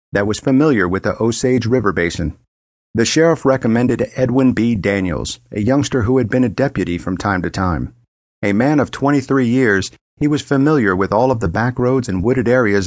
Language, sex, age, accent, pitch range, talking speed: English, male, 50-69, American, 95-130 Hz, 195 wpm